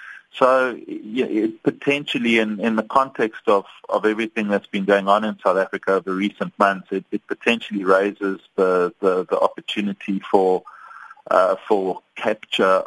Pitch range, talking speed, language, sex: 95-110 Hz, 160 wpm, English, male